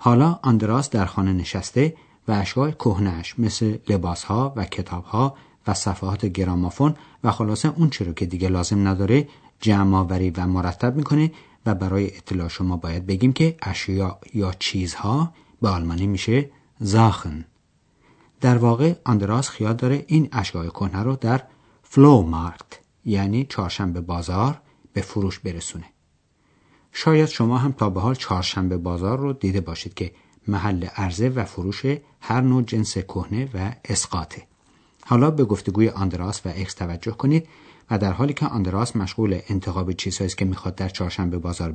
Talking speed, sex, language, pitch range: 145 wpm, male, Persian, 95-125 Hz